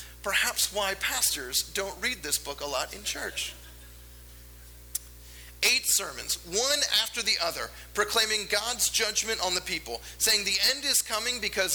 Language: English